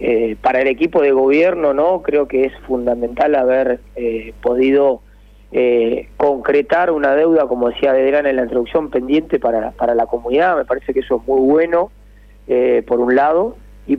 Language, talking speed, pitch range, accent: Spanish, 175 wpm, 125-155 Hz, Argentinian